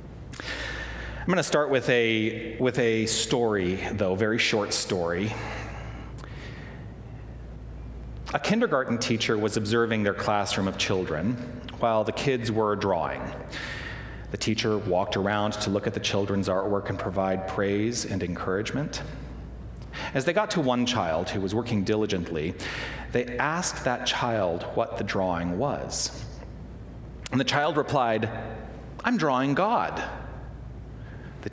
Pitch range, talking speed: 100-125 Hz, 130 wpm